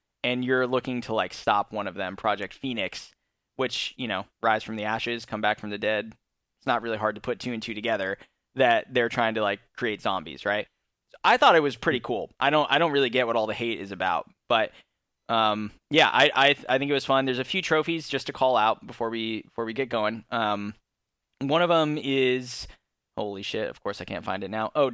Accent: American